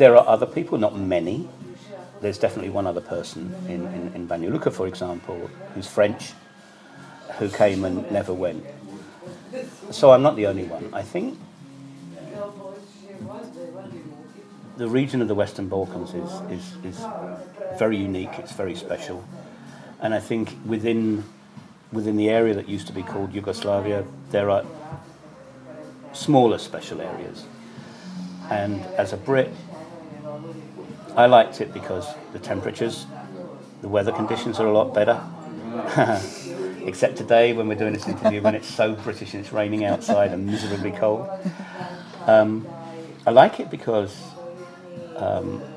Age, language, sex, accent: 50-69, English, male, British